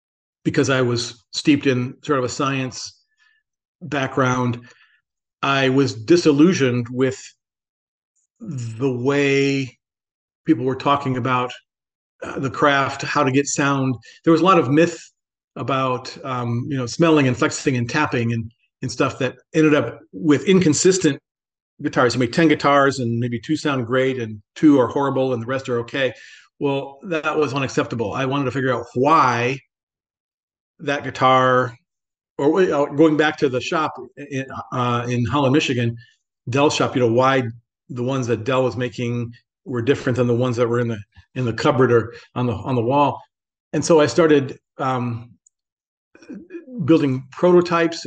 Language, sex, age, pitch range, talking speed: English, male, 40-59, 120-150 Hz, 160 wpm